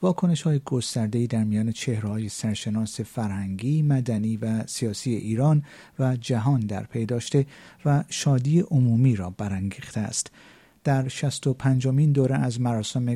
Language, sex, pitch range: Persian, male, 110-140 Hz